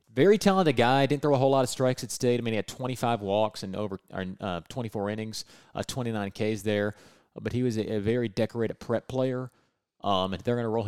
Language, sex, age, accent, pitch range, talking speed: English, male, 30-49, American, 100-120 Hz, 235 wpm